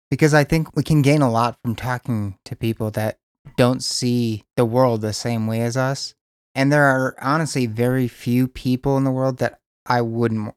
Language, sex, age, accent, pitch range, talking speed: English, male, 30-49, American, 115-135 Hz, 200 wpm